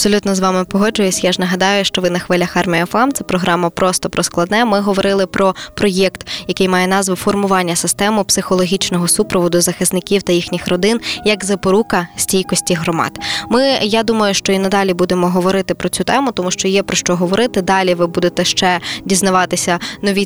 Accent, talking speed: native, 180 wpm